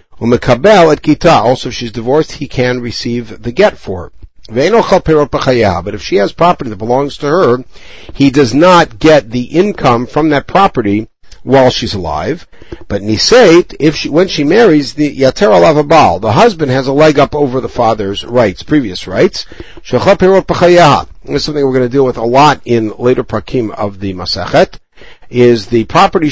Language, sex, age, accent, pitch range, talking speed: English, male, 60-79, American, 110-150 Hz, 150 wpm